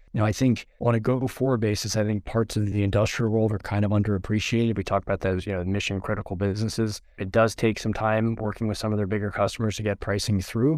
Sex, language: male, English